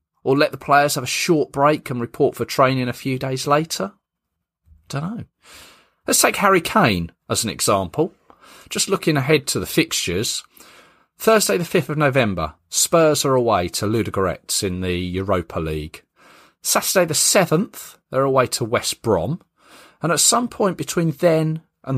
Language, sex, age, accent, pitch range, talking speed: English, male, 40-59, British, 100-155 Hz, 165 wpm